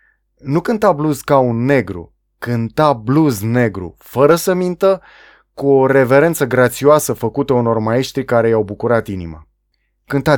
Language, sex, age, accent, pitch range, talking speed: Romanian, male, 20-39, native, 115-145 Hz, 140 wpm